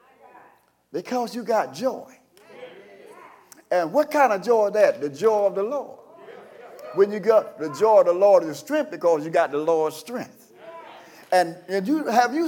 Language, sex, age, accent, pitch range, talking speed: English, male, 50-69, American, 225-315 Hz, 180 wpm